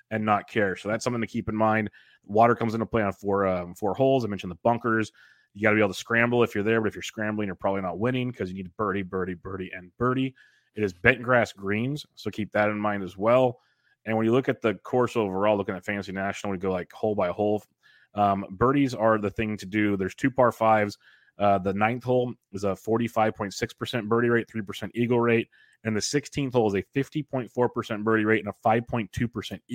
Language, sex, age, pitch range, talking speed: English, male, 30-49, 100-120 Hz, 230 wpm